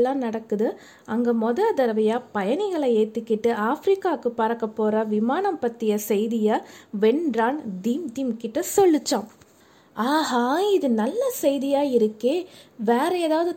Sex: female